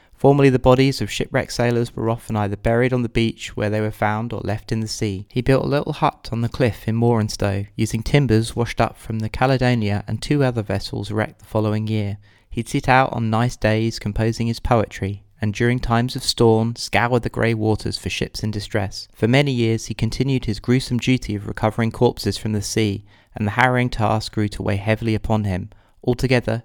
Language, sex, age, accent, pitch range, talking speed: English, male, 30-49, British, 105-125 Hz, 210 wpm